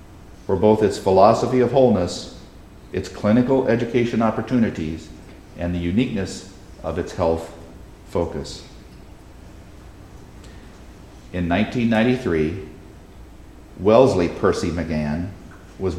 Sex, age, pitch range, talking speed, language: male, 50-69, 85-125 Hz, 85 wpm, English